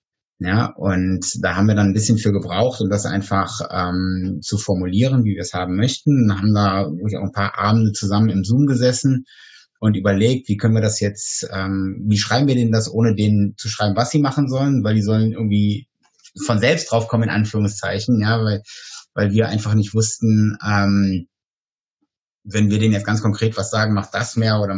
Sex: male